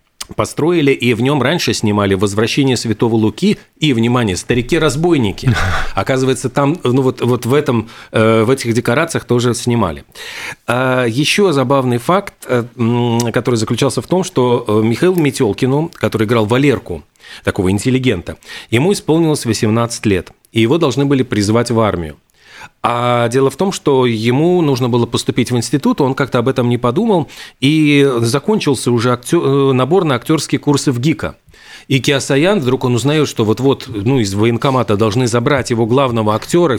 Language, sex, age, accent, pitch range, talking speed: Russian, male, 40-59, native, 115-140 Hz, 145 wpm